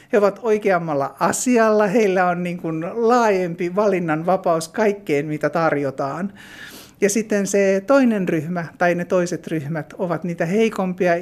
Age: 50-69